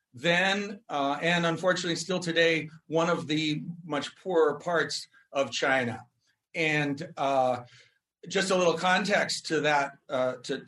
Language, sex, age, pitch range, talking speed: English, male, 40-59, 140-180 Hz, 130 wpm